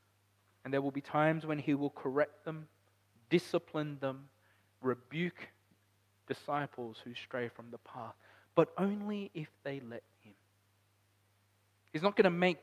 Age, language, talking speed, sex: 20-39, English, 145 wpm, male